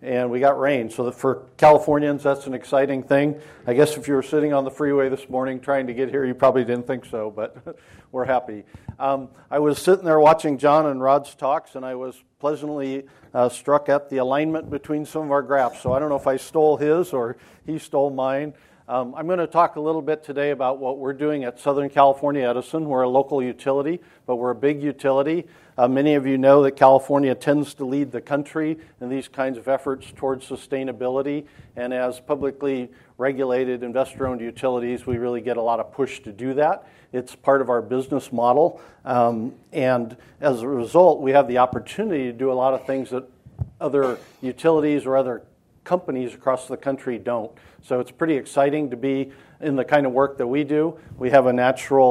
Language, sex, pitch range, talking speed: English, male, 125-145 Hz, 205 wpm